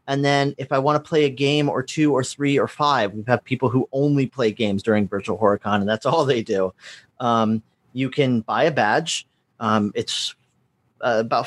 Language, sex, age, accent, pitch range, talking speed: English, male, 30-49, American, 110-135 Hz, 215 wpm